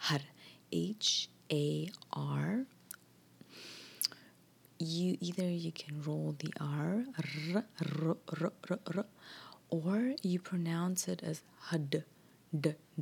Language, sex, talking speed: English, female, 90 wpm